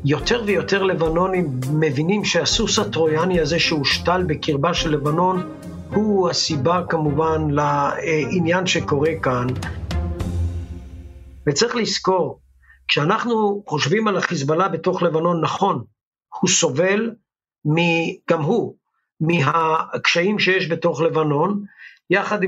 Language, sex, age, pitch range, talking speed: Hebrew, male, 50-69, 155-190 Hz, 95 wpm